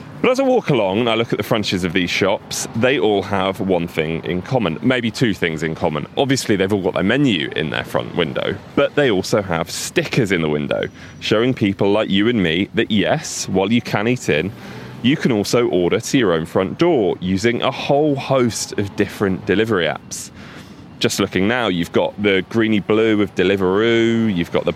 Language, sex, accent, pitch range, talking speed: English, male, British, 95-135 Hz, 210 wpm